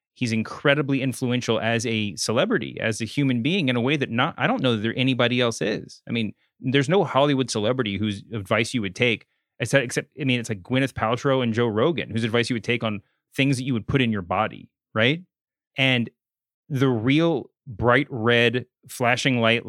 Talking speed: 200 wpm